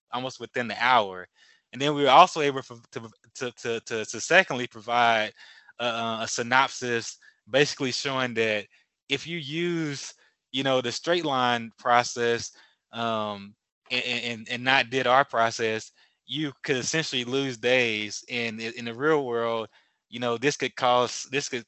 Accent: American